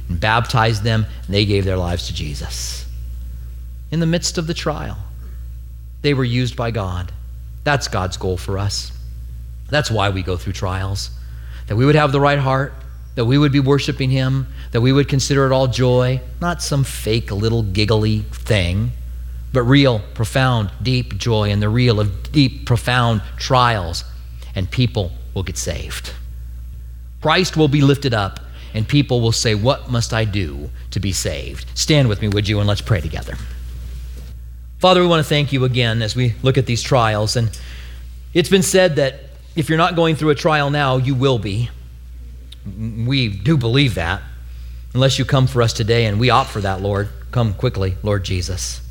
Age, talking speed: 40-59, 180 wpm